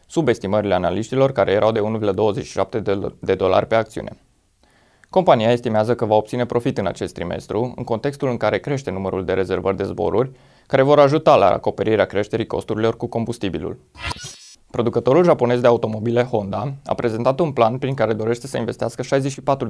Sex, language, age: male, Romanian, 20-39